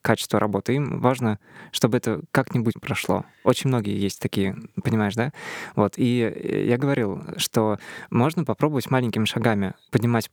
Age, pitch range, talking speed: 20-39, 110-130 Hz, 140 wpm